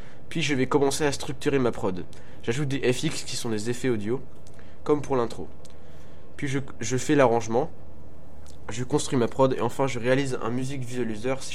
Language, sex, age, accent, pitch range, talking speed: French, male, 20-39, French, 110-135 Hz, 185 wpm